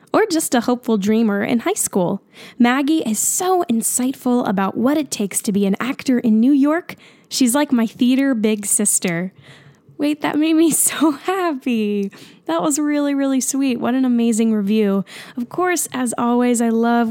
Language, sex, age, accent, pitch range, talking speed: English, female, 10-29, American, 210-280 Hz, 175 wpm